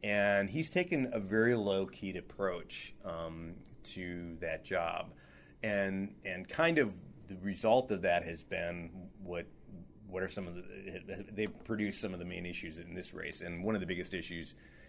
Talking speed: 175 wpm